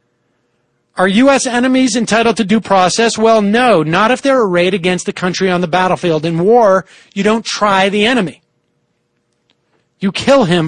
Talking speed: 165 wpm